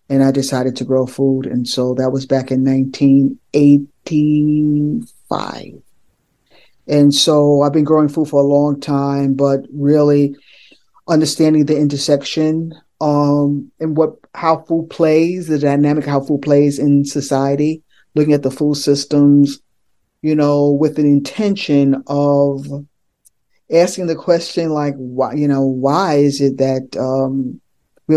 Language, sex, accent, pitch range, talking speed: English, male, American, 135-150 Hz, 140 wpm